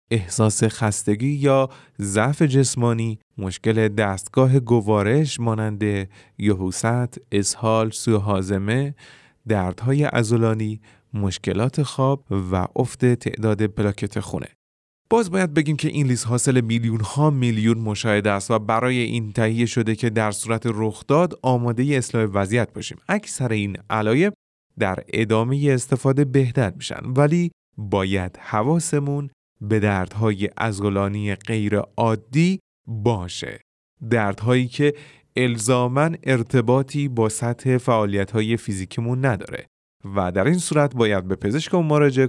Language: Persian